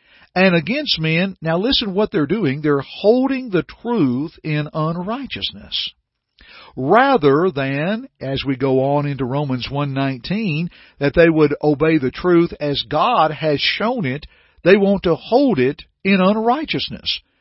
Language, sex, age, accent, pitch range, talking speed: English, male, 50-69, American, 140-195 Hz, 140 wpm